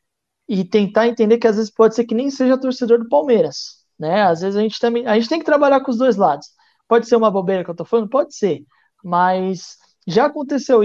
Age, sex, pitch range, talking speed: 20-39, male, 190-225 Hz, 230 wpm